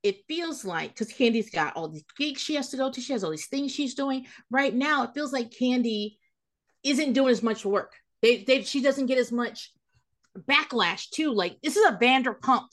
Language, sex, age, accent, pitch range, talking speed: English, female, 40-59, American, 220-305 Hz, 215 wpm